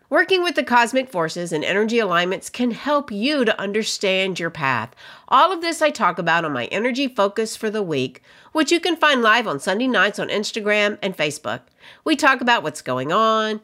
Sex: female